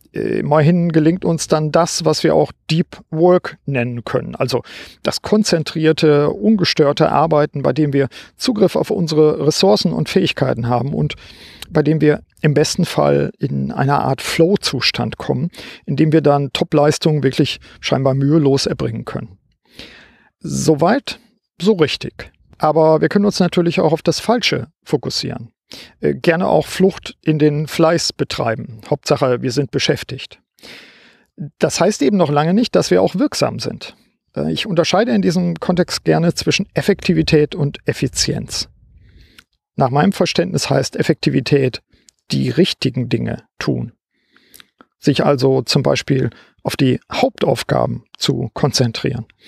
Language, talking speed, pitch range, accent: German, 135 wpm, 140-175 Hz, German